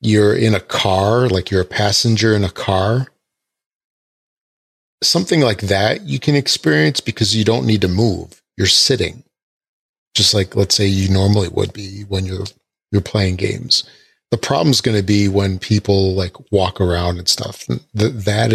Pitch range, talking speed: 95-115 Hz, 170 wpm